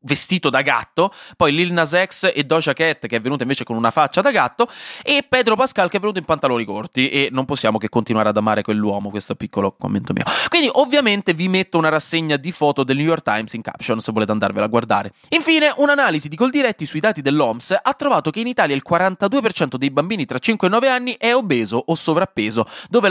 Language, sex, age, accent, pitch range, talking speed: Italian, male, 20-39, native, 120-190 Hz, 220 wpm